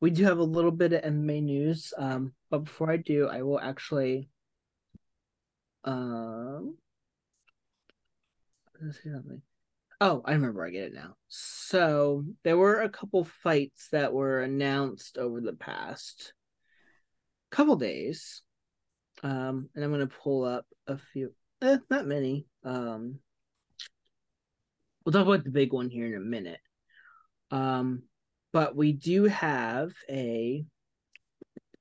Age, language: 20-39, English